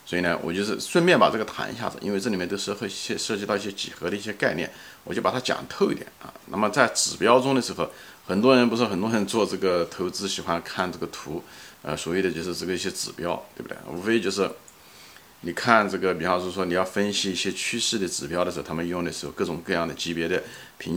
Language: Chinese